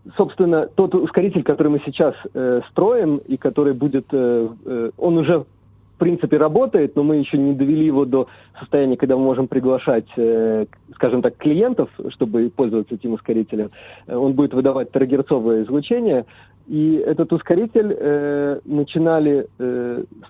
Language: English